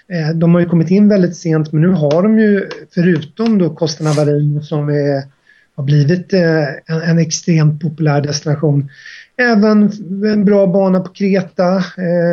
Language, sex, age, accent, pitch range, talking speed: English, male, 30-49, Swedish, 155-195 Hz, 135 wpm